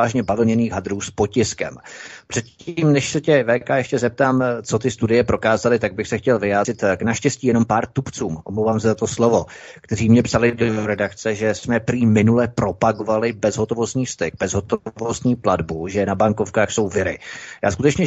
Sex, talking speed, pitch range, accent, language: male, 170 wpm, 105-120 Hz, native, Czech